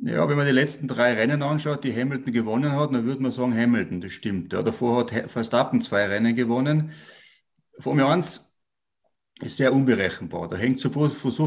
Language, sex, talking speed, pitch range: German, male, 200 wpm, 115-130 Hz